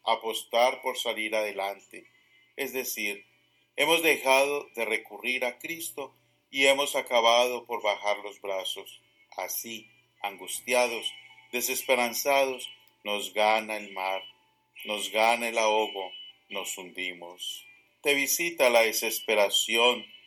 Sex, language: male, English